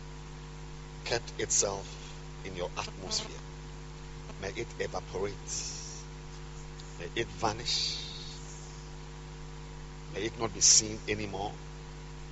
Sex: male